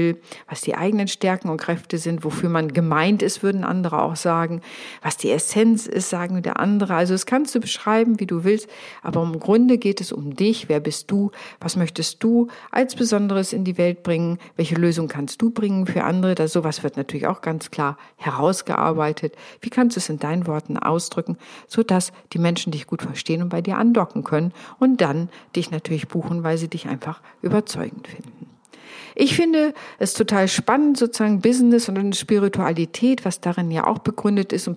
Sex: female